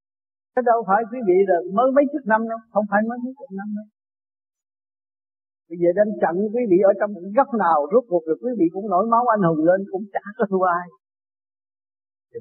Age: 50-69